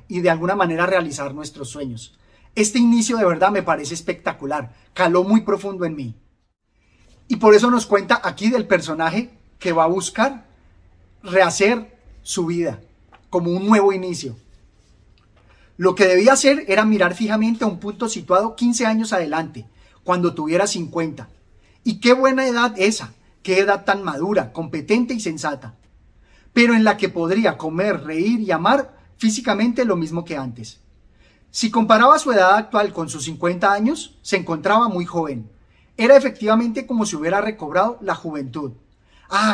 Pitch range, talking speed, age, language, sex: 155-220 Hz, 155 wpm, 30-49, Spanish, male